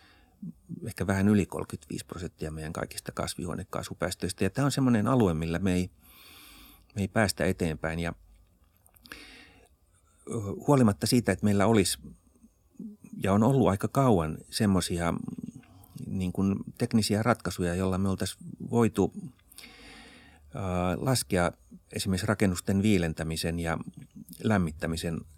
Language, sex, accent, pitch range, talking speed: Finnish, male, native, 85-110 Hz, 105 wpm